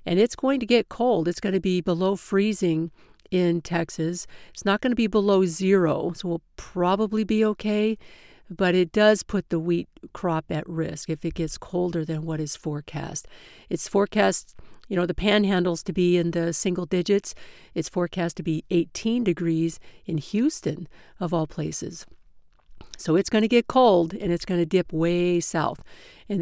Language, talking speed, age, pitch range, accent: English, 180 wpm, 50-69, 165-195 Hz, American